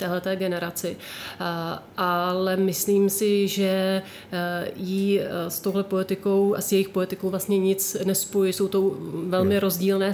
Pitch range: 180-195 Hz